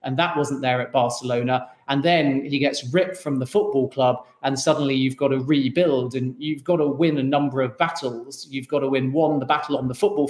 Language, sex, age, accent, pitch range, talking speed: English, male, 40-59, British, 135-160 Hz, 235 wpm